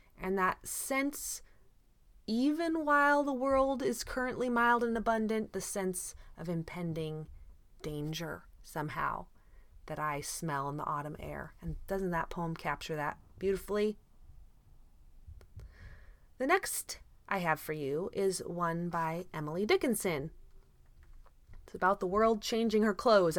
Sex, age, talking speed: female, 30-49, 130 wpm